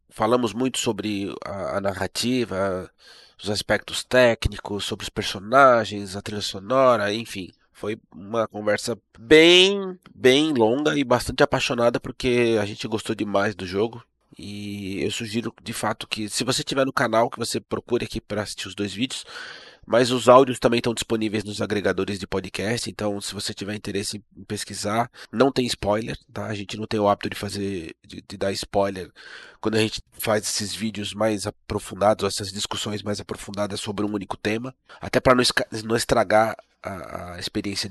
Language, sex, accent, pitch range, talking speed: Portuguese, male, Brazilian, 100-120 Hz, 170 wpm